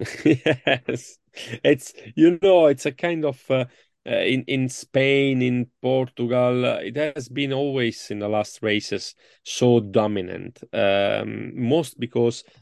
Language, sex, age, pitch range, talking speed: English, male, 30-49, 105-130 Hz, 135 wpm